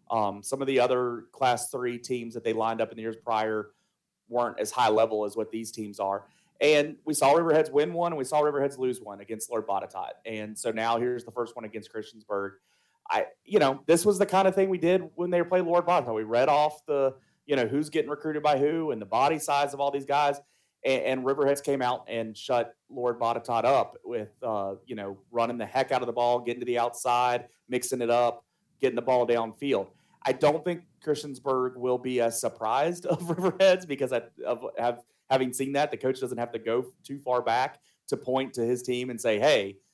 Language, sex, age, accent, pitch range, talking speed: English, male, 30-49, American, 115-145 Hz, 225 wpm